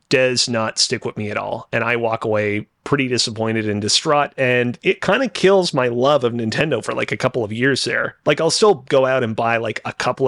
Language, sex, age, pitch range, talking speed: English, male, 30-49, 115-145 Hz, 240 wpm